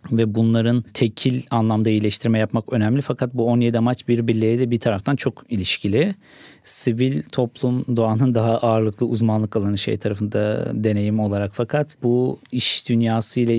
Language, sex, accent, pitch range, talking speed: Turkish, male, native, 110-130 Hz, 135 wpm